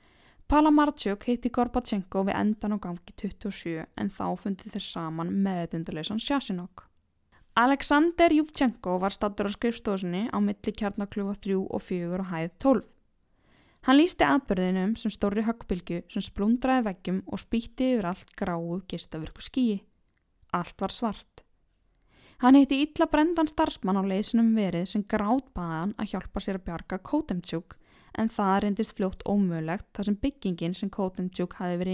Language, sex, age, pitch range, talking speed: English, female, 10-29, 185-245 Hz, 145 wpm